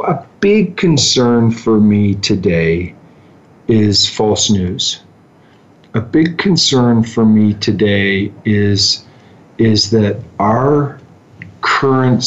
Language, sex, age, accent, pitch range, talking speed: English, male, 50-69, American, 100-120 Hz, 100 wpm